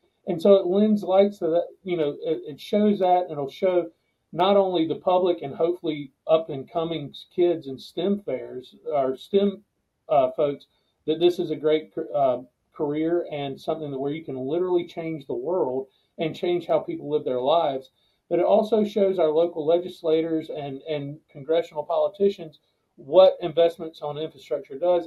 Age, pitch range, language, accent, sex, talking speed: 40-59, 150-180 Hz, English, American, male, 175 wpm